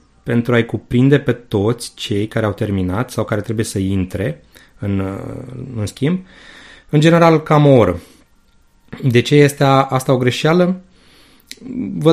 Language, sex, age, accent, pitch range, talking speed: Romanian, male, 30-49, native, 105-145 Hz, 145 wpm